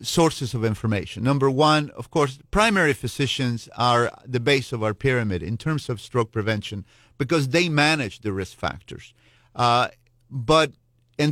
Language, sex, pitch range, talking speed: English, male, 110-145 Hz, 155 wpm